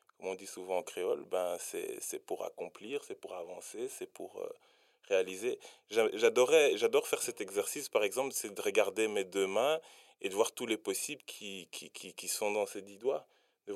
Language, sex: French, male